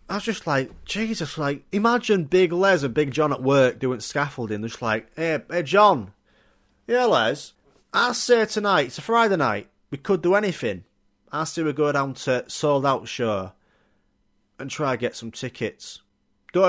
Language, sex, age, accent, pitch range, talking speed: English, male, 30-49, British, 115-185 Hz, 180 wpm